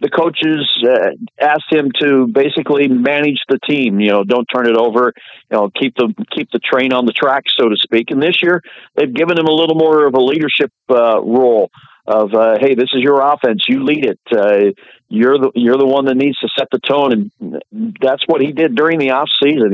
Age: 50-69